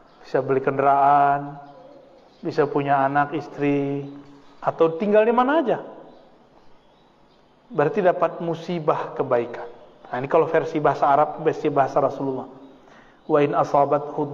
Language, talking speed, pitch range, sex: Malay, 115 wpm, 145-200 Hz, male